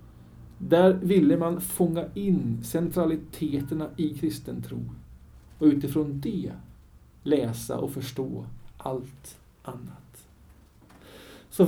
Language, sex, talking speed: Swedish, male, 85 wpm